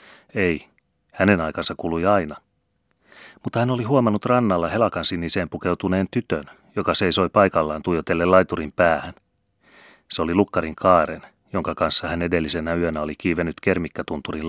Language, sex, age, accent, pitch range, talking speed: Finnish, male, 30-49, native, 80-95 Hz, 135 wpm